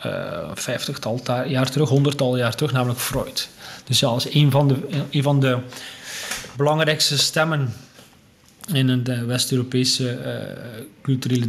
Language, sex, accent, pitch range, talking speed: Dutch, male, Dutch, 125-155 Hz, 115 wpm